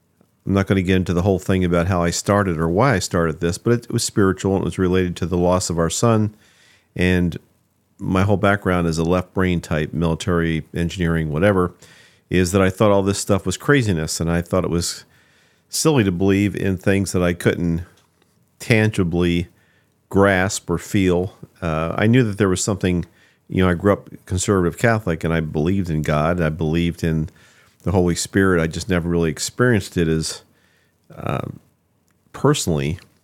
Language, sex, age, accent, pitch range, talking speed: English, male, 50-69, American, 85-100 Hz, 190 wpm